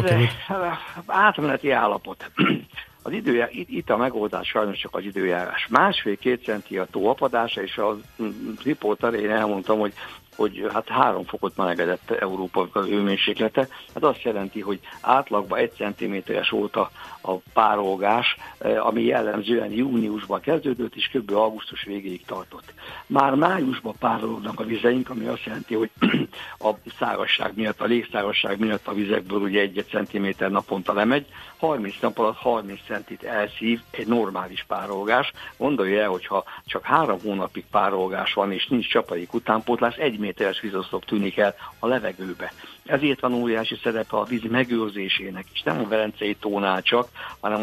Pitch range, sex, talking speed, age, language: 100-115 Hz, male, 140 wpm, 60-79, Hungarian